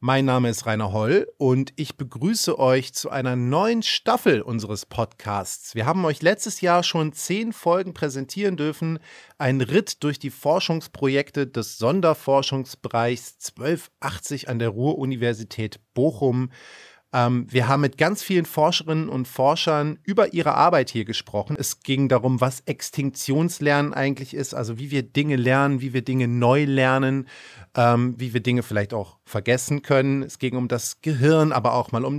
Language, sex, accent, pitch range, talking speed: German, male, German, 125-160 Hz, 155 wpm